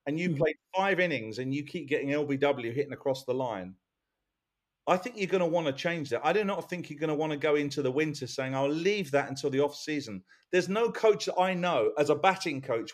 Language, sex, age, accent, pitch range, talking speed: English, male, 40-59, British, 145-195 Hz, 250 wpm